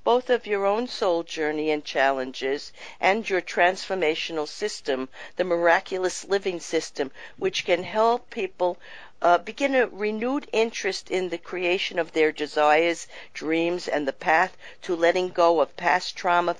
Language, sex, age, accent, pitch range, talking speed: English, female, 50-69, American, 170-225 Hz, 150 wpm